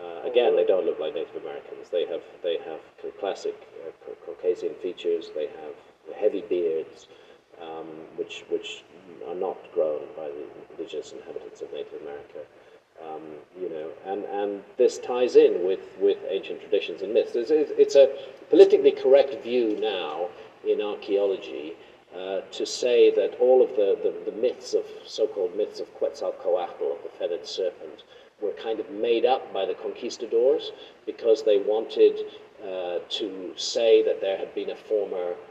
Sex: male